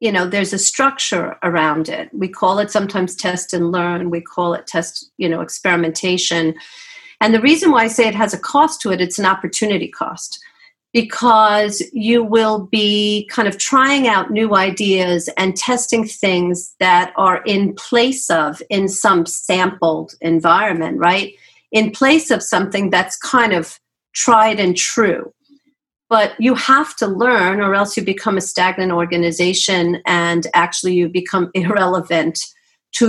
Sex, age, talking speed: female, 50-69, 160 wpm